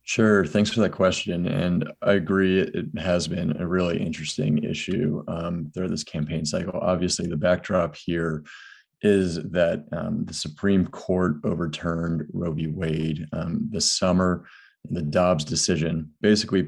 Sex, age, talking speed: male, 30-49, 150 wpm